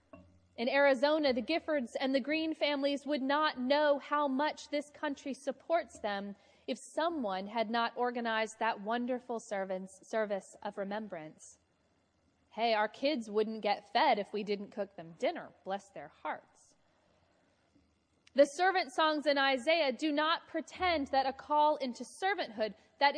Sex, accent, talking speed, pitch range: female, American, 145 wpm, 200-285 Hz